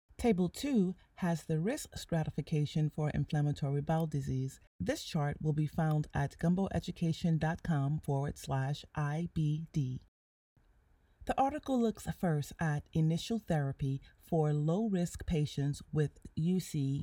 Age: 30-49